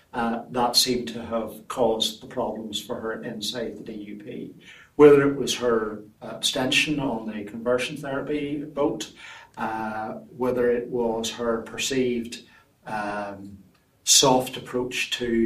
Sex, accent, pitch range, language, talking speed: male, British, 115-145 Hz, English, 130 wpm